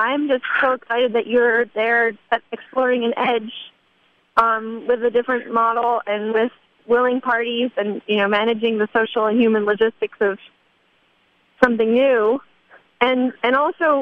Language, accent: English, American